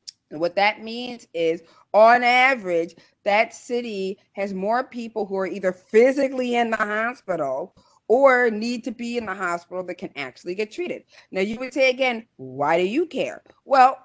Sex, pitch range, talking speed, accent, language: female, 205-275 Hz, 175 wpm, American, English